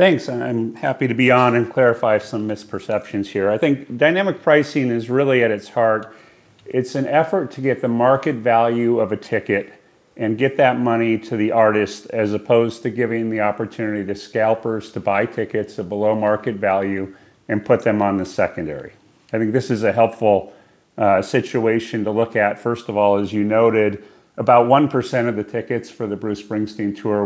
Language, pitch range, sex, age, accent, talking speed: English, 100-120 Hz, male, 40-59, American, 190 wpm